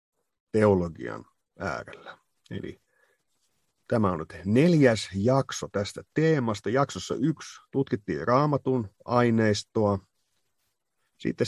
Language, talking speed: Finnish, 85 wpm